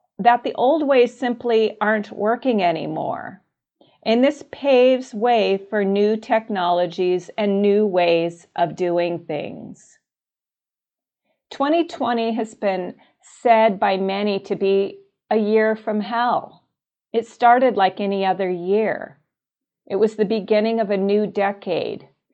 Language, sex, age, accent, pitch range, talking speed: English, female, 40-59, American, 180-225 Hz, 125 wpm